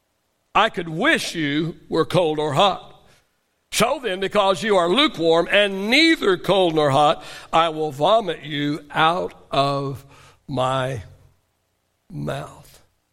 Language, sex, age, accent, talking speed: English, male, 60-79, American, 125 wpm